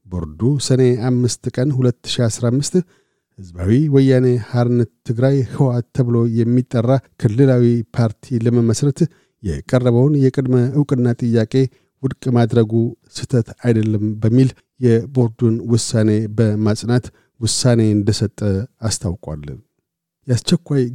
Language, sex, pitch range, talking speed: Amharic, male, 115-130 Hz, 80 wpm